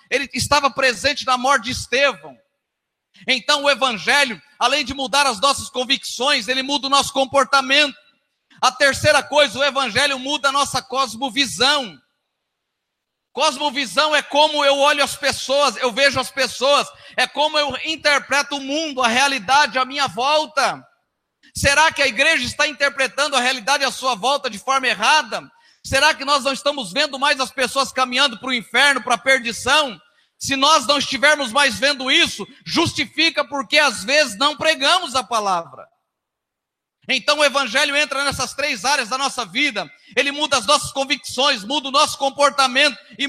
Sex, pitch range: male, 255-290 Hz